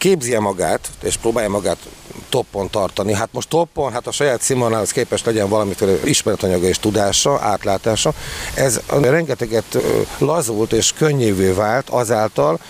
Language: Hungarian